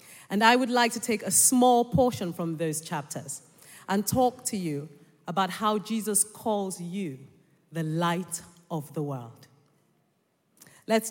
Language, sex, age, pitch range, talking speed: English, female, 40-59, 160-220 Hz, 145 wpm